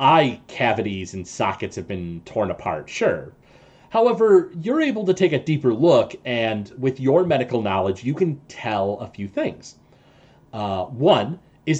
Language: English